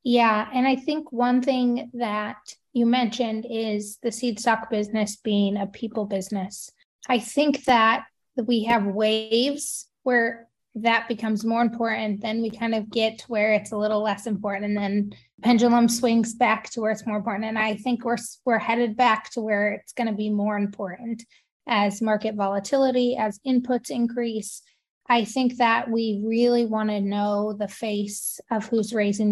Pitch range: 210-245 Hz